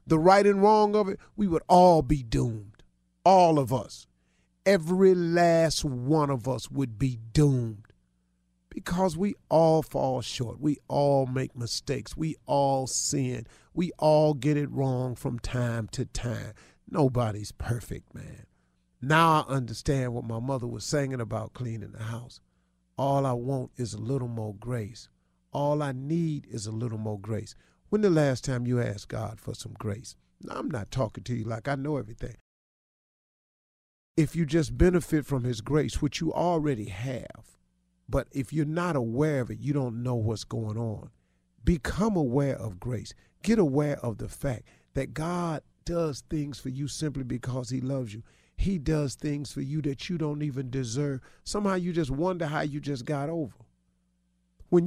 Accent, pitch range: American, 110-155 Hz